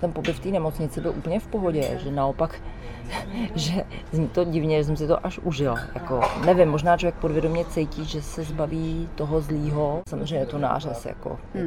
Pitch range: 135-160 Hz